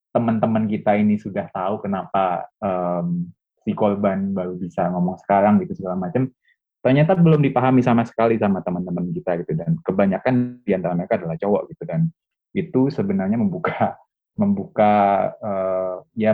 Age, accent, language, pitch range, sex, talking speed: 20-39, native, Indonesian, 95-125 Hz, male, 145 wpm